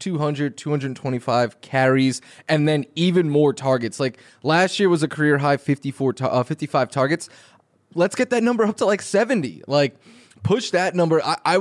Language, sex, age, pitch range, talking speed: English, male, 20-39, 130-165 Hz, 165 wpm